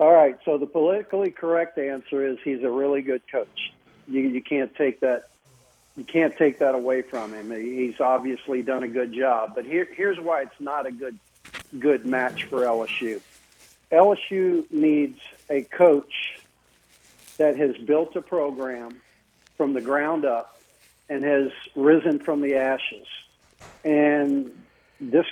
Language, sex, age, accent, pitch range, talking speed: English, male, 50-69, American, 135-165 Hz, 150 wpm